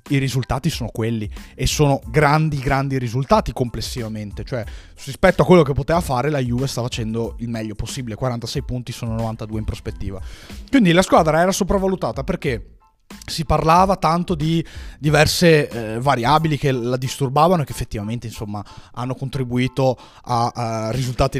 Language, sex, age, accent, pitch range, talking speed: Italian, male, 20-39, native, 115-155 Hz, 155 wpm